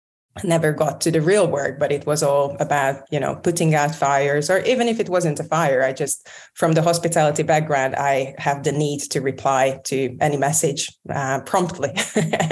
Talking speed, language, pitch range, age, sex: 190 wpm, English, 135-160 Hz, 20-39, female